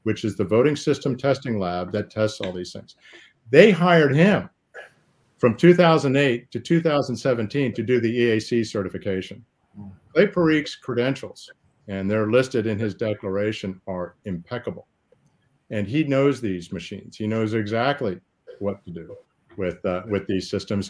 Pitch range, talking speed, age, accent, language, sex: 100-130 Hz, 145 wpm, 50-69, American, English, male